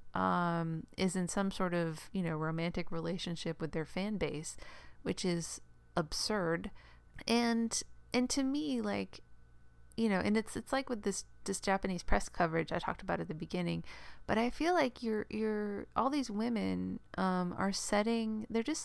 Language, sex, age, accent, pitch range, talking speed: English, female, 30-49, American, 165-230 Hz, 170 wpm